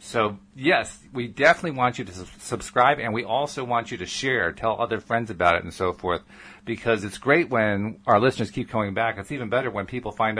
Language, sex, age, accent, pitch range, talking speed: English, male, 40-59, American, 100-125 Hz, 220 wpm